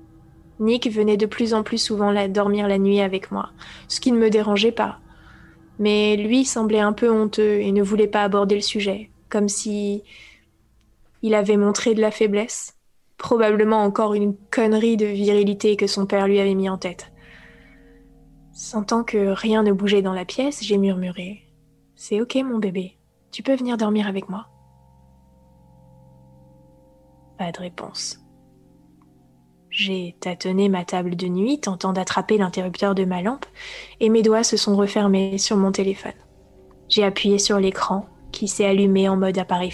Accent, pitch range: French, 155-215 Hz